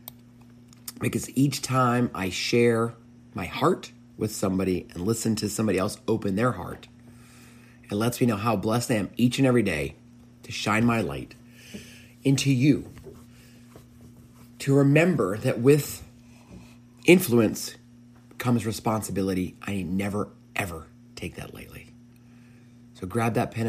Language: English